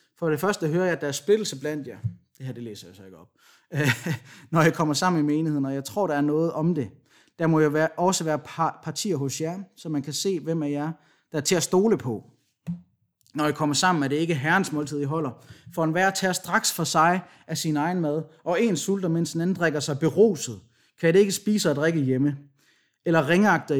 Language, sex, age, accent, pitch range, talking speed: Danish, male, 30-49, native, 140-175 Hz, 240 wpm